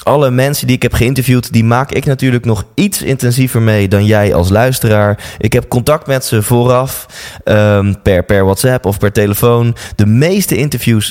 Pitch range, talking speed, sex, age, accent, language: 100-130 Hz, 185 wpm, male, 20-39, Dutch, Dutch